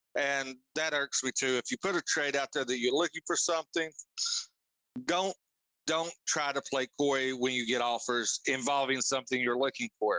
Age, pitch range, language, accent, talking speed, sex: 40-59, 130-160 Hz, English, American, 190 wpm, male